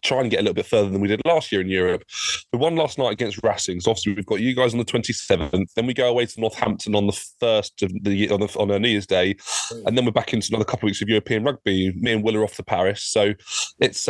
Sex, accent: male, British